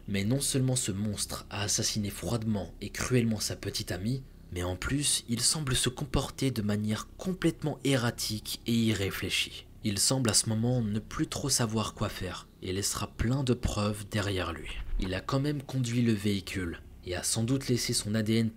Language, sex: French, male